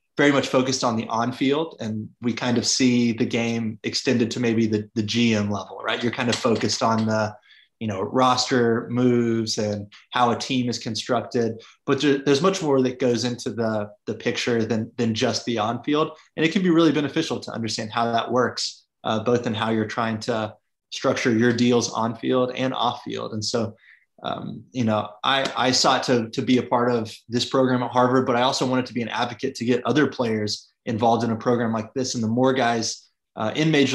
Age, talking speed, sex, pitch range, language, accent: 20-39, 210 wpm, male, 115-130 Hz, English, American